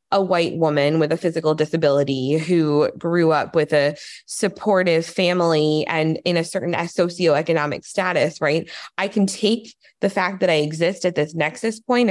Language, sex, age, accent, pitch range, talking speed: English, female, 20-39, American, 155-195 Hz, 165 wpm